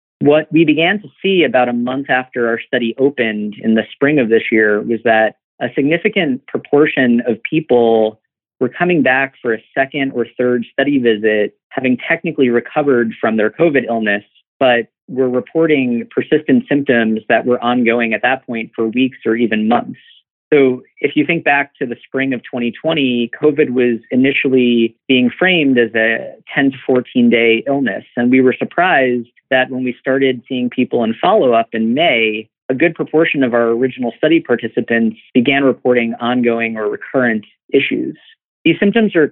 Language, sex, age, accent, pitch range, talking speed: English, male, 40-59, American, 115-140 Hz, 170 wpm